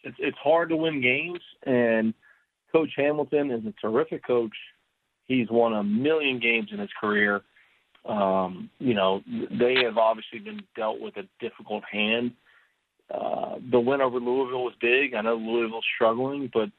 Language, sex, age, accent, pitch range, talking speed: English, male, 40-59, American, 110-130 Hz, 155 wpm